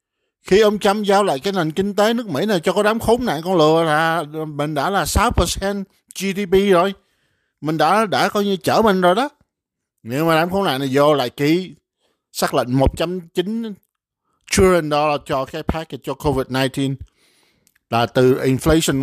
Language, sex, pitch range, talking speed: Vietnamese, male, 150-200 Hz, 180 wpm